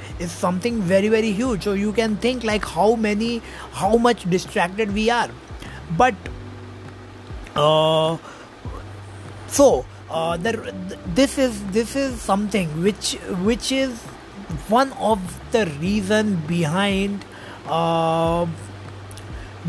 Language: English